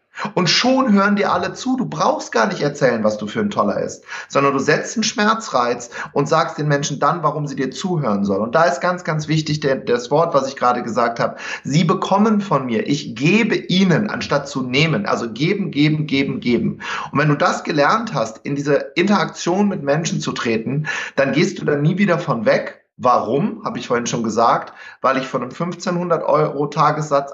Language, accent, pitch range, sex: German, German, 140-185 Hz, male